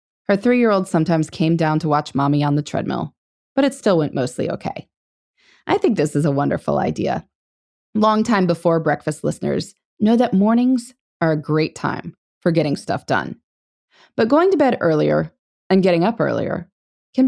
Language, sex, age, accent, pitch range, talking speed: English, female, 20-39, American, 155-240 Hz, 175 wpm